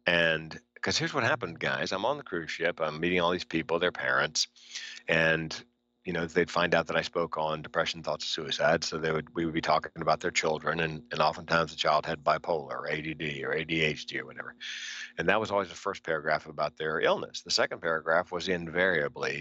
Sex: male